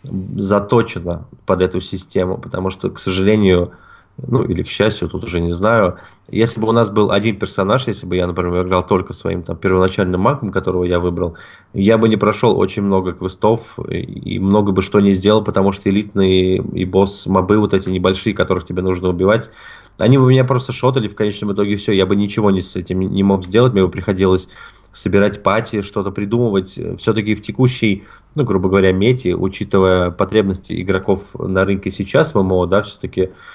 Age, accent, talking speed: 20-39, native, 185 wpm